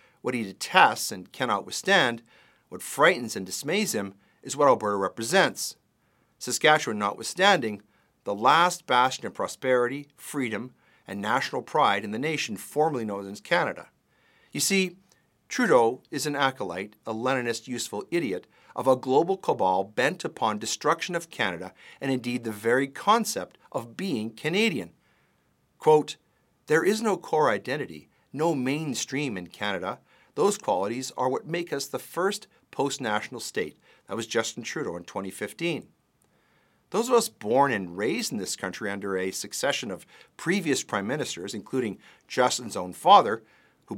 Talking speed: 145 wpm